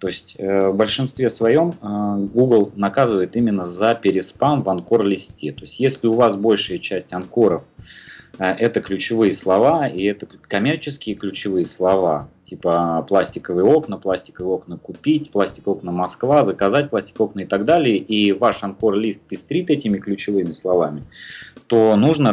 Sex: male